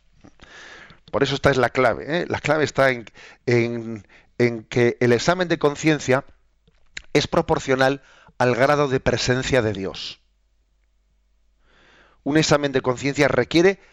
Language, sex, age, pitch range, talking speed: Spanish, male, 40-59, 120-140 Hz, 125 wpm